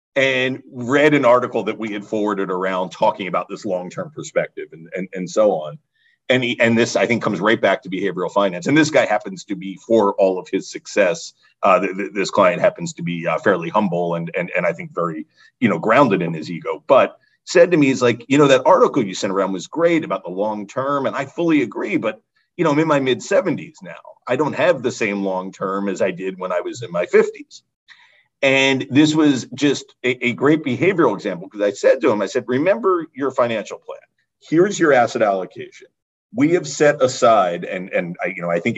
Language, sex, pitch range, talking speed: English, male, 105-170 Hz, 225 wpm